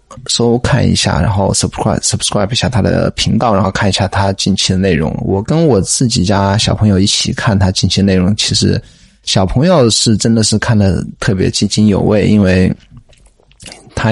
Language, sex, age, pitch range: Chinese, male, 20-39, 100-125 Hz